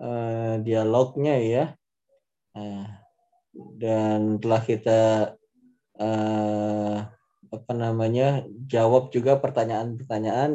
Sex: male